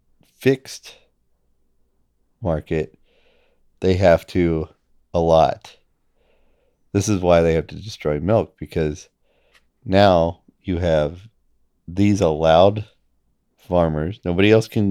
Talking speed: 100 wpm